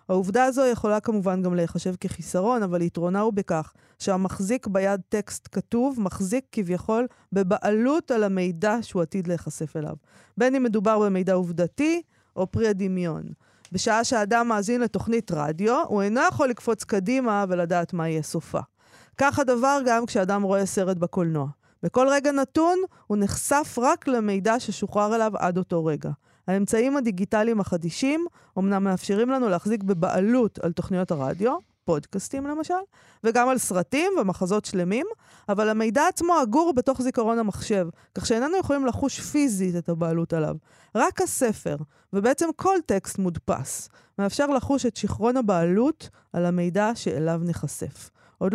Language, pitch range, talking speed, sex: Hebrew, 180-250 Hz, 140 wpm, female